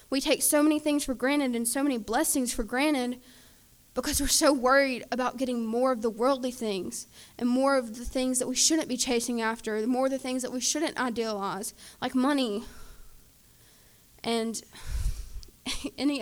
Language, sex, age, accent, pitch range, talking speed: English, female, 10-29, American, 235-280 Hz, 175 wpm